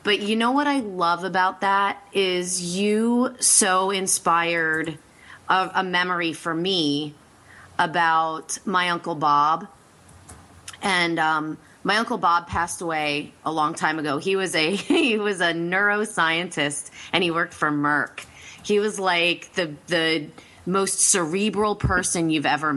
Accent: American